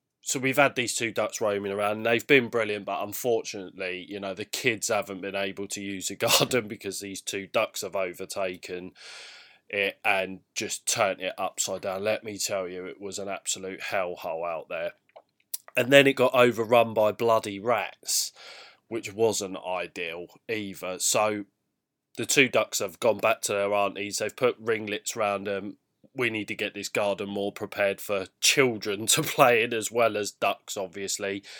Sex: male